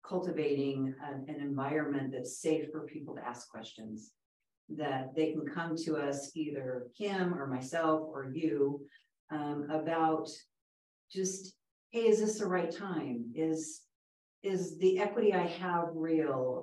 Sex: female